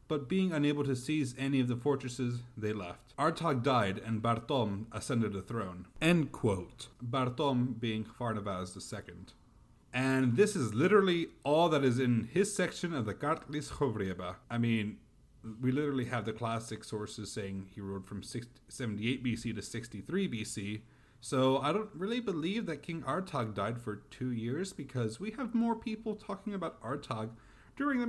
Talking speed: 165 wpm